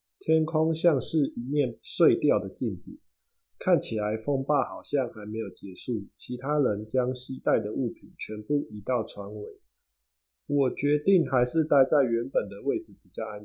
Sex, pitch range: male, 110-150 Hz